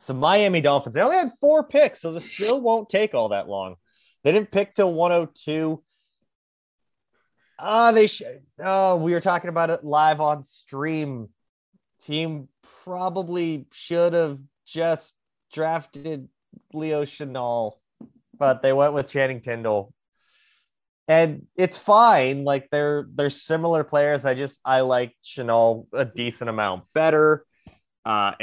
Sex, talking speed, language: male, 140 wpm, English